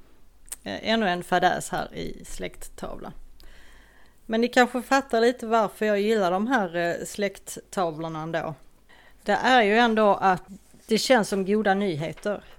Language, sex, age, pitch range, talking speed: Swedish, female, 30-49, 175-225 Hz, 135 wpm